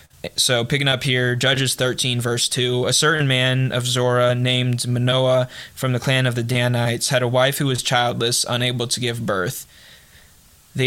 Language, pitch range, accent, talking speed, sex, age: English, 120-135 Hz, American, 175 wpm, male, 20-39